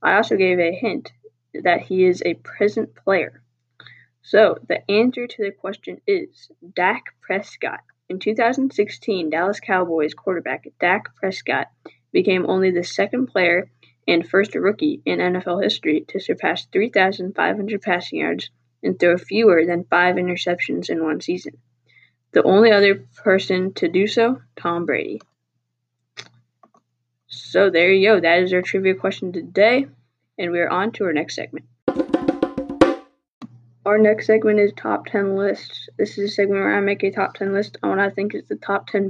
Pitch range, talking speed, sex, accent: 170-205 Hz, 160 wpm, female, American